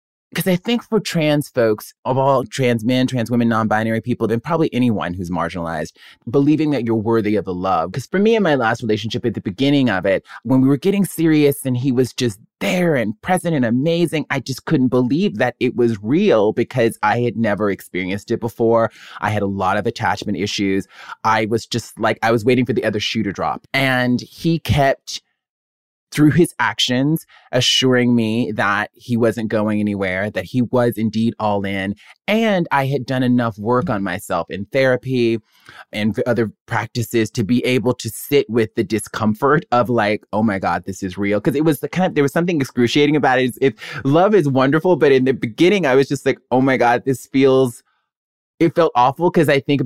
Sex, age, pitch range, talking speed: male, 30-49, 110-140 Hz, 205 wpm